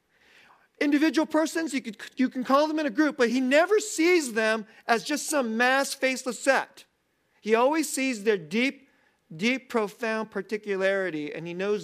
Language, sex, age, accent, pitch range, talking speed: English, male, 40-59, American, 170-230 Hz, 160 wpm